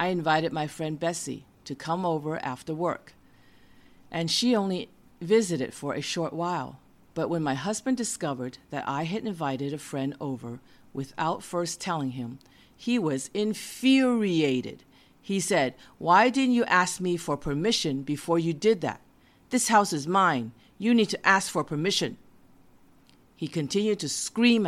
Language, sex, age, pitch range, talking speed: English, female, 50-69, 135-175 Hz, 155 wpm